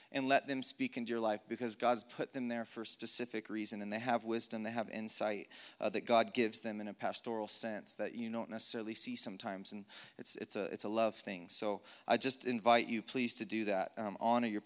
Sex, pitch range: male, 115-140 Hz